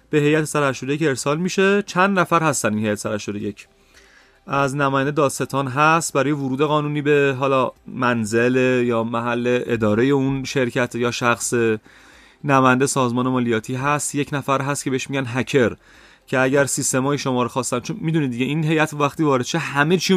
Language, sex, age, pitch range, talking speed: Persian, male, 30-49, 125-160 Hz, 165 wpm